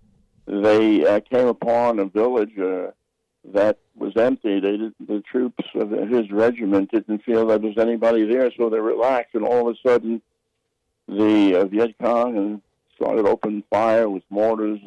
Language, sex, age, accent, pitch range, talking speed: English, male, 60-79, American, 100-120 Hz, 165 wpm